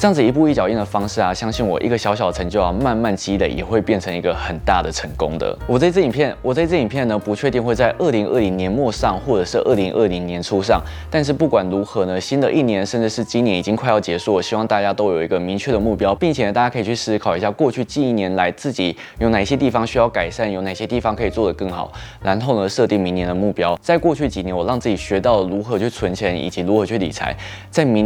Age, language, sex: 20-39, Chinese, male